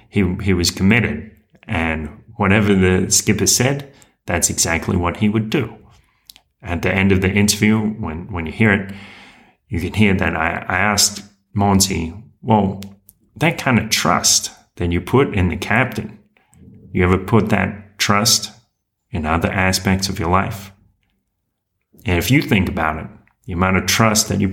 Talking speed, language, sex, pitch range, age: 165 wpm, English, male, 95-110 Hz, 30-49